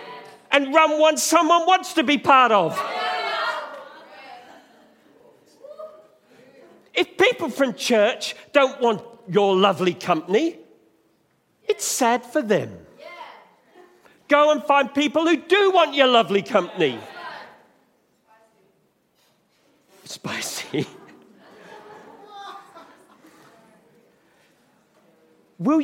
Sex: male